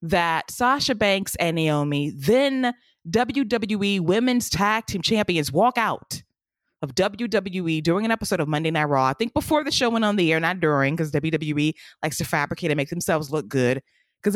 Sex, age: female, 20-39